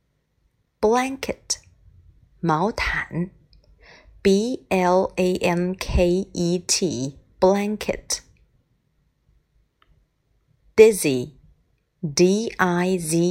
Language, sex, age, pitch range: Chinese, female, 30-49, 165-210 Hz